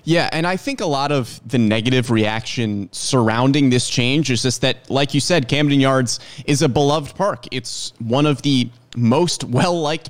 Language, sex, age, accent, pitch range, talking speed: English, male, 30-49, American, 120-150 Hz, 185 wpm